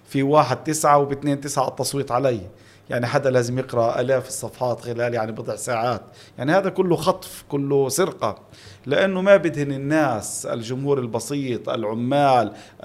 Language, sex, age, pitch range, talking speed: Arabic, male, 40-59, 120-170 Hz, 140 wpm